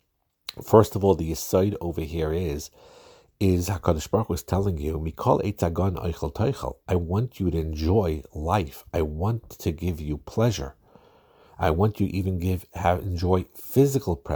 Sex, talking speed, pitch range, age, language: male, 145 wpm, 80-95 Hz, 50-69, English